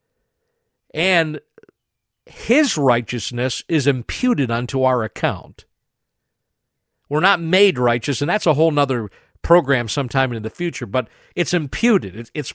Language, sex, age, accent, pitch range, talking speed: English, male, 50-69, American, 140-210 Hz, 125 wpm